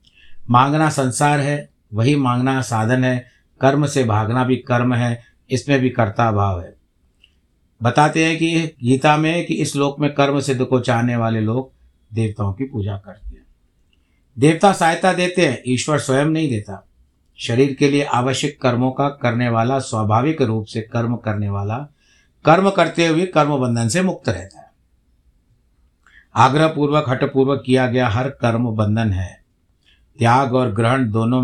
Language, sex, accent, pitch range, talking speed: Hindi, male, native, 95-140 Hz, 155 wpm